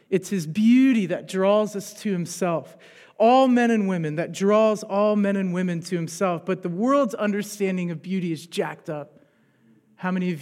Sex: male